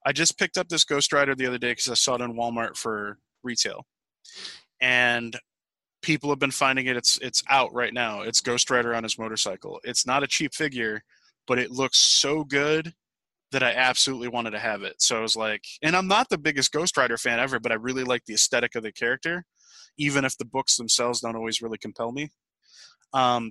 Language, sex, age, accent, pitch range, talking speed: English, male, 20-39, American, 120-140 Hz, 215 wpm